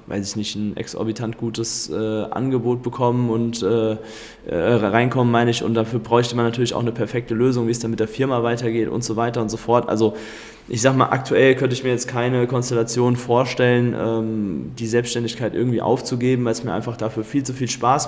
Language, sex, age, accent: German, male, 20-39, German